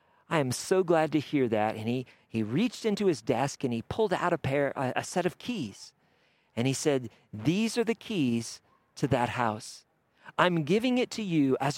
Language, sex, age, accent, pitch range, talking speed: English, male, 50-69, American, 115-160 Hz, 210 wpm